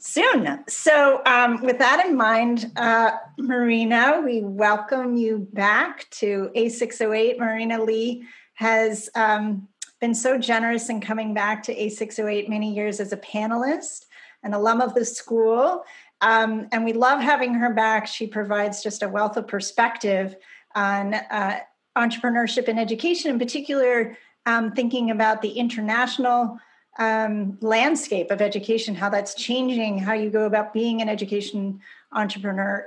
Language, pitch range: English, 210-250 Hz